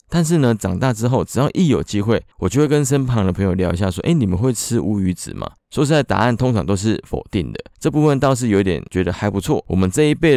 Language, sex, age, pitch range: Chinese, male, 20-39, 95-130 Hz